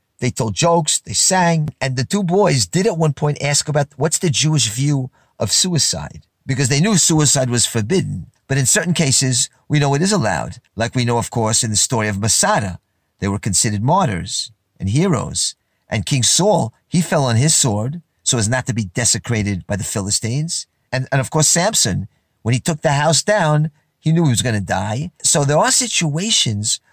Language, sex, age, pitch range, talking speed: English, male, 50-69, 115-155 Hz, 205 wpm